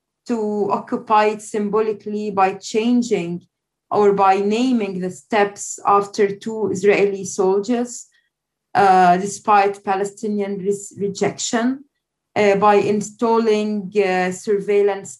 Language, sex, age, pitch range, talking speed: English, female, 20-39, 195-220 Hz, 95 wpm